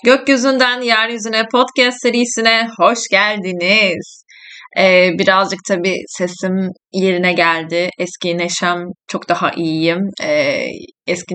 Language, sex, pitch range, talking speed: Turkish, female, 175-225 Hz, 100 wpm